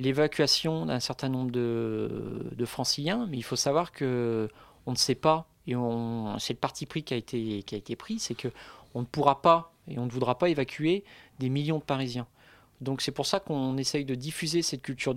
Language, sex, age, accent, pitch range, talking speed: French, male, 40-59, French, 125-150 Hz, 200 wpm